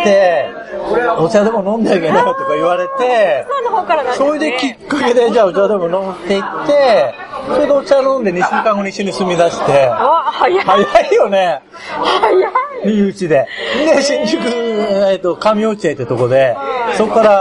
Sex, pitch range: male, 175-255 Hz